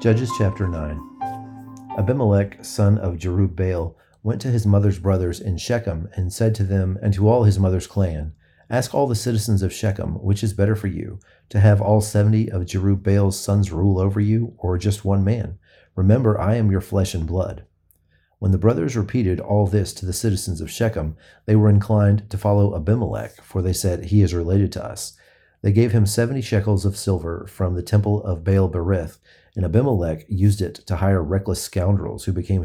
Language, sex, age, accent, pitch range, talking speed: English, male, 40-59, American, 90-105 Hz, 190 wpm